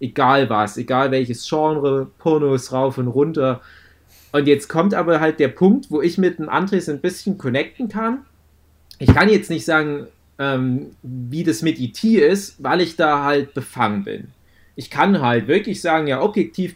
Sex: male